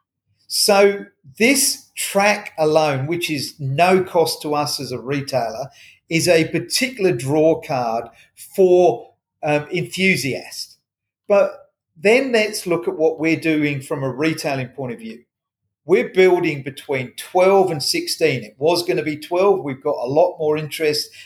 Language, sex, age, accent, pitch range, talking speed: English, male, 40-59, British, 140-175 Hz, 150 wpm